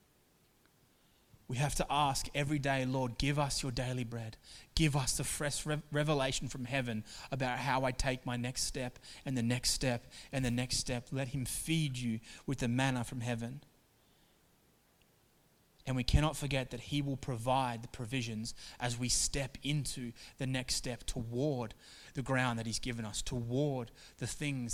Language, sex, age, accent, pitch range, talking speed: English, male, 20-39, Australian, 125-140 Hz, 170 wpm